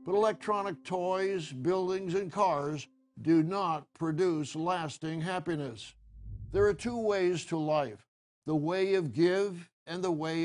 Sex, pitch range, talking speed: male, 150-185 Hz, 140 wpm